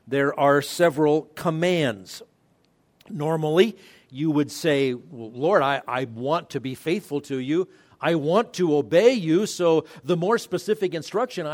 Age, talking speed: 50-69, 140 wpm